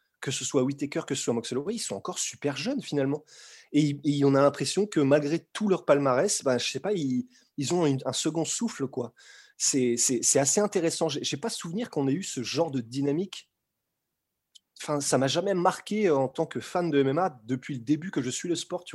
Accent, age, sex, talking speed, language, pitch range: French, 20-39, male, 230 wpm, French, 130-165 Hz